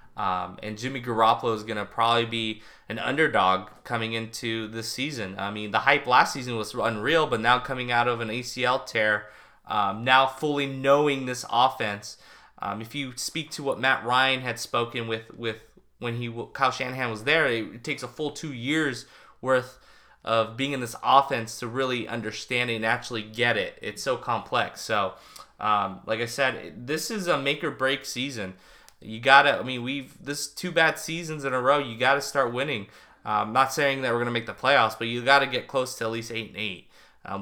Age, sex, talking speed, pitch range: 20-39, male, 205 wpm, 115-140 Hz